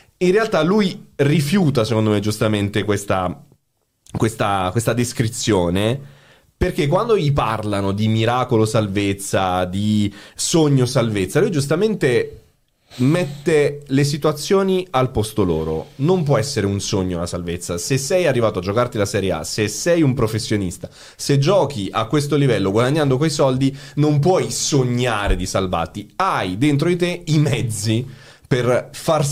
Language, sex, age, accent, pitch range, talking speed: Italian, male, 30-49, native, 105-145 Hz, 140 wpm